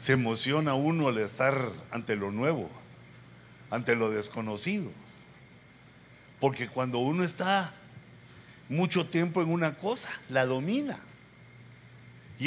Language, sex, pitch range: Spanish, male, 130-190 Hz